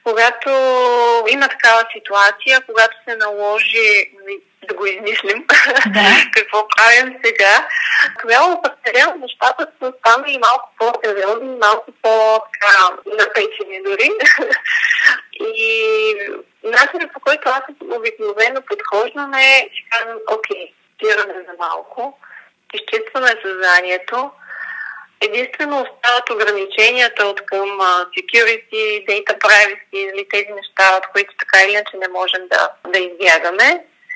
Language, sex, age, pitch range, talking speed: Bulgarian, female, 20-39, 210-315 Hz, 105 wpm